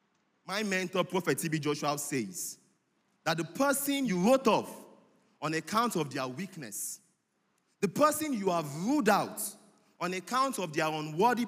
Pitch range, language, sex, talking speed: 150-240 Hz, English, male, 145 wpm